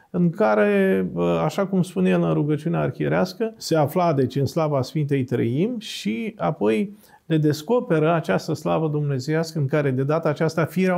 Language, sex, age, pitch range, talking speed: Romanian, male, 40-59, 140-185 Hz, 160 wpm